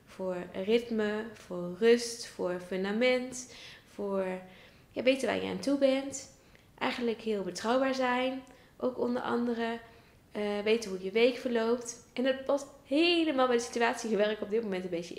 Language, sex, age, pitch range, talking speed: Dutch, female, 20-39, 195-240 Hz, 160 wpm